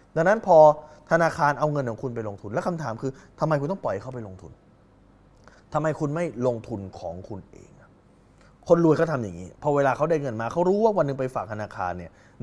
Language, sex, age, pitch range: Thai, male, 20-39, 95-140 Hz